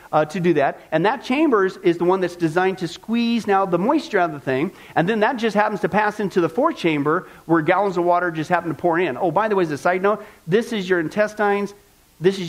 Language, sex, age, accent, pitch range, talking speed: English, male, 40-59, American, 155-210 Hz, 265 wpm